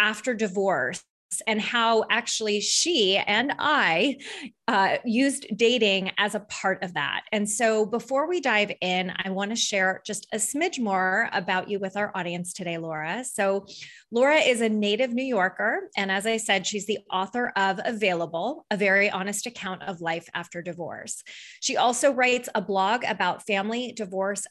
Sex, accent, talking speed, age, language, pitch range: female, American, 170 wpm, 30-49, English, 185-230 Hz